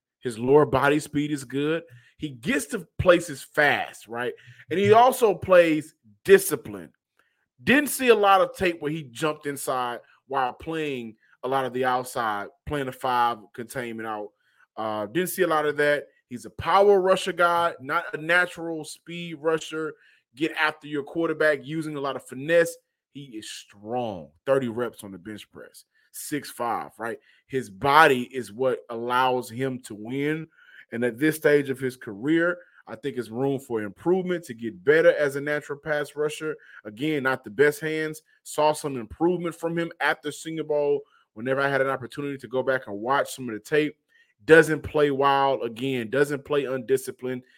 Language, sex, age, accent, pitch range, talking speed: English, male, 20-39, American, 125-155 Hz, 175 wpm